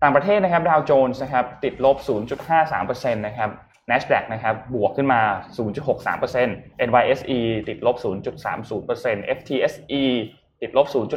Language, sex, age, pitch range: Thai, male, 20-39, 115-145 Hz